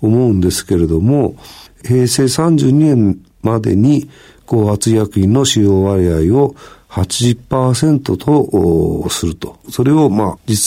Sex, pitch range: male, 95-130 Hz